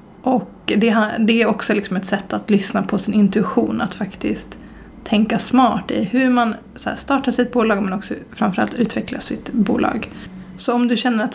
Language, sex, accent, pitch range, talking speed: Swedish, female, native, 205-235 Hz, 190 wpm